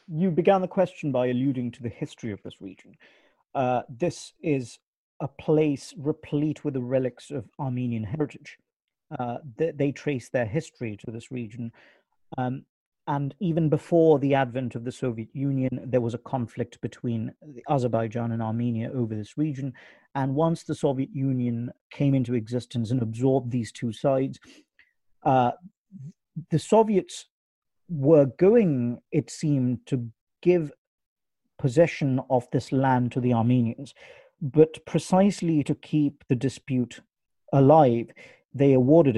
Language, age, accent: English, 40-59, British